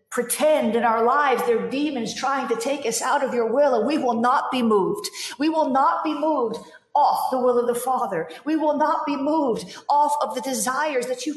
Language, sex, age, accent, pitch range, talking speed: English, female, 50-69, American, 255-315 Hz, 220 wpm